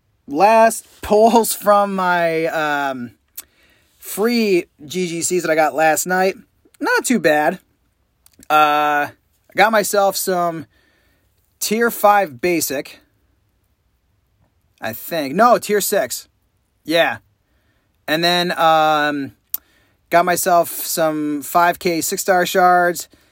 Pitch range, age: 145-180 Hz, 30-49